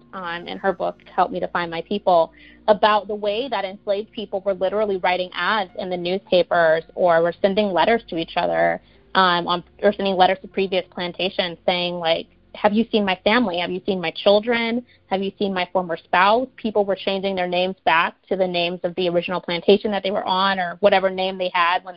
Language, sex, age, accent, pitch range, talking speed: English, female, 30-49, American, 185-225 Hz, 215 wpm